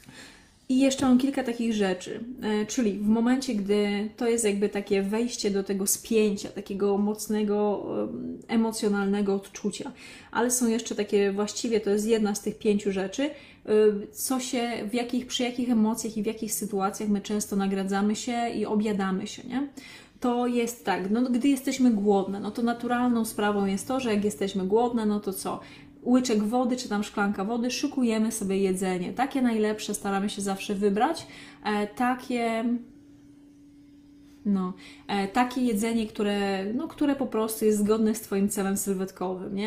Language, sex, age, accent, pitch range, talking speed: Polish, female, 20-39, native, 200-240 Hz, 155 wpm